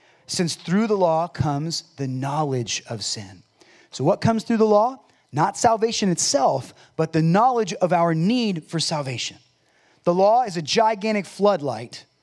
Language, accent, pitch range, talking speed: English, American, 140-185 Hz, 155 wpm